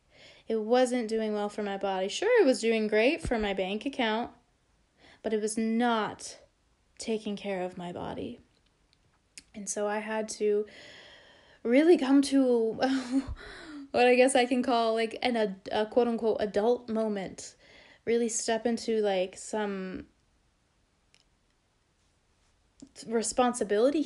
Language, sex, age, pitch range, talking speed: English, female, 20-39, 210-255 Hz, 130 wpm